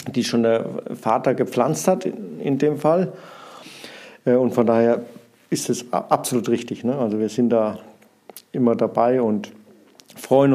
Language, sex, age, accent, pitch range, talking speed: German, male, 50-69, German, 120-150 Hz, 140 wpm